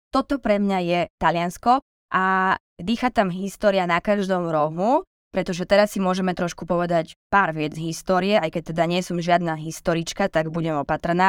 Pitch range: 175-210 Hz